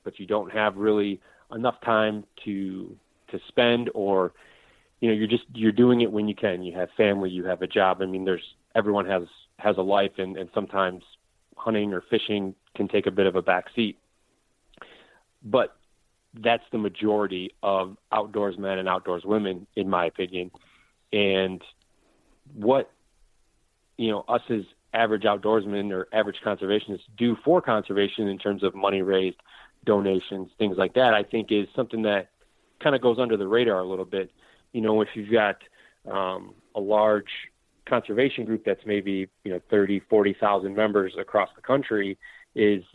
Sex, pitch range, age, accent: male, 95-110 Hz, 30-49, American